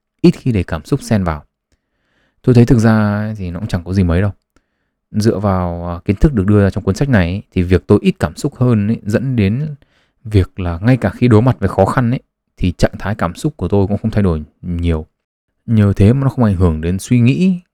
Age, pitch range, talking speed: 20-39, 95-120 Hz, 245 wpm